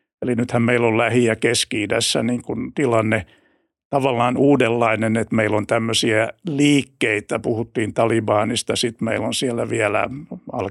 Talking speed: 135 wpm